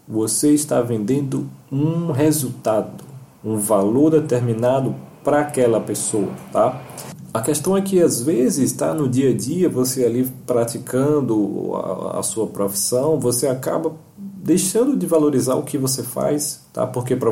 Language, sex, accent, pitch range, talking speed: Portuguese, male, Brazilian, 110-150 Hz, 145 wpm